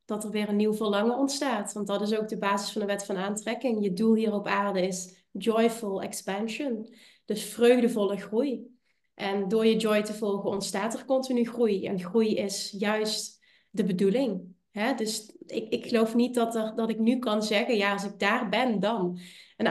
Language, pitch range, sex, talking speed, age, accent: English, 195-235 Hz, female, 190 wpm, 30-49, Dutch